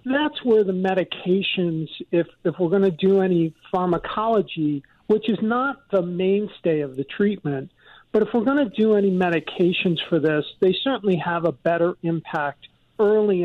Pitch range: 160-195 Hz